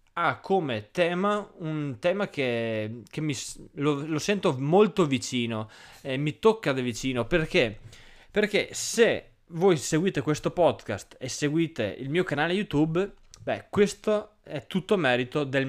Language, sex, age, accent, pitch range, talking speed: Italian, male, 20-39, native, 125-180 Hz, 150 wpm